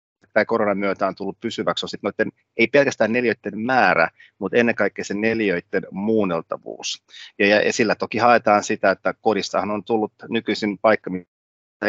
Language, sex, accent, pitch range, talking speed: Finnish, male, native, 90-110 Hz, 155 wpm